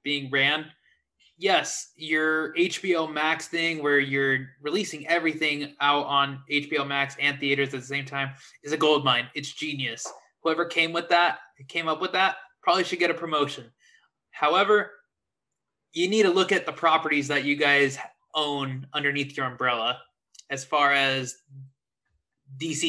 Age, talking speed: 20-39, 155 wpm